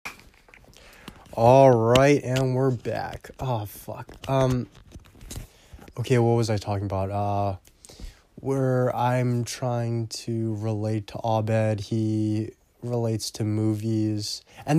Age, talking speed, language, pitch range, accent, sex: 20-39, 110 wpm, English, 100-130 Hz, American, male